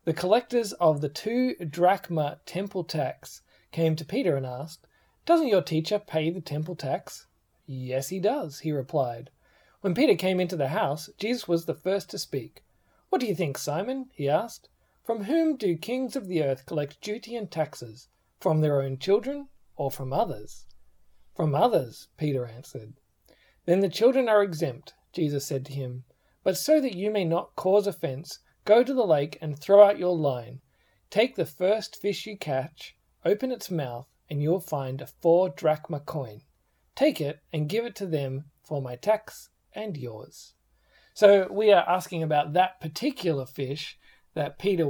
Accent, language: Australian, English